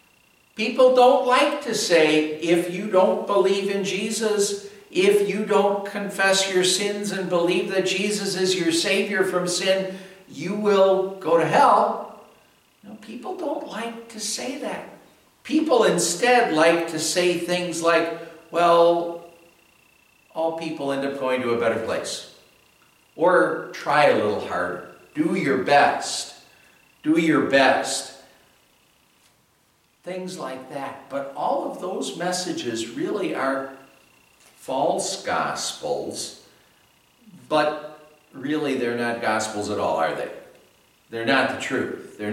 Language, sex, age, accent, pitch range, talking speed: English, male, 60-79, American, 125-190 Hz, 130 wpm